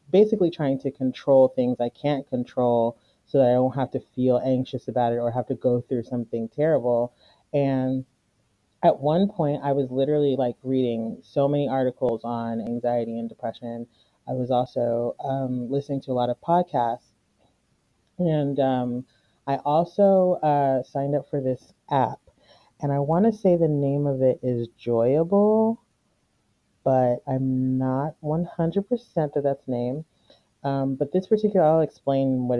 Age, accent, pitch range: 30-49, American, 120-145 Hz